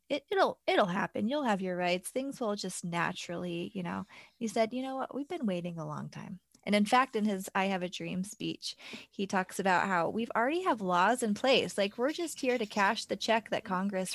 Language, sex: English, female